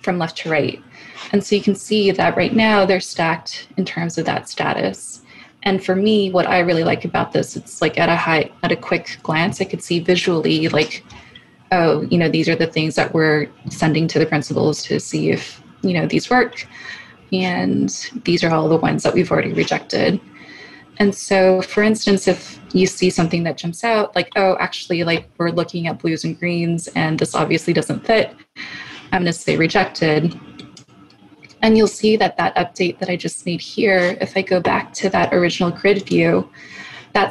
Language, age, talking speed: English, 20-39, 200 wpm